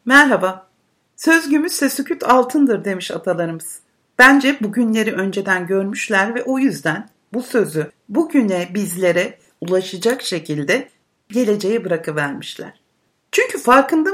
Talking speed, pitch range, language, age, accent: 100 wpm, 205-290 Hz, Turkish, 60-79, native